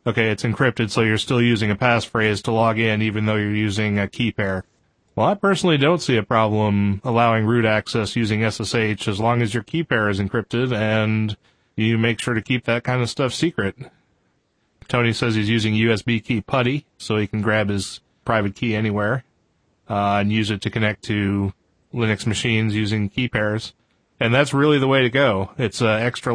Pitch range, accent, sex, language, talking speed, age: 105-125 Hz, American, male, English, 200 wpm, 30-49